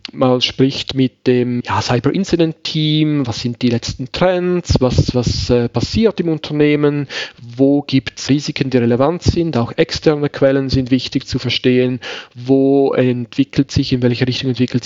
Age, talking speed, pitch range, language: 40-59, 160 wpm, 120-140 Hz, German